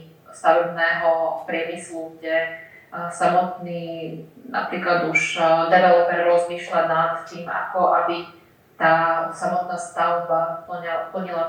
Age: 30-49